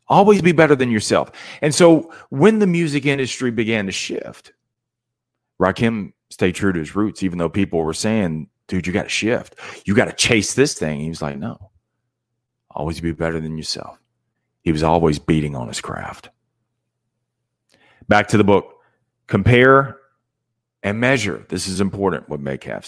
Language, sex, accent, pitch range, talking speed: English, male, American, 95-125 Hz, 170 wpm